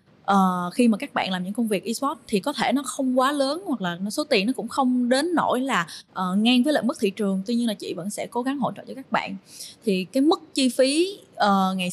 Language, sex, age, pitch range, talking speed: Vietnamese, female, 20-39, 200-270 Hz, 270 wpm